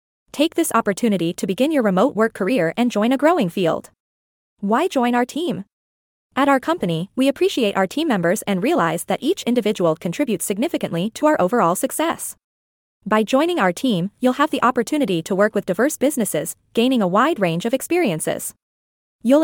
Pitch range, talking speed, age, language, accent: 200-275 Hz, 175 wpm, 20-39, English, American